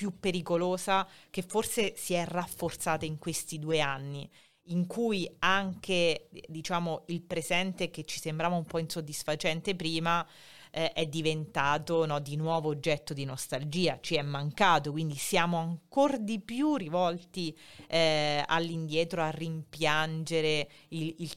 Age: 30-49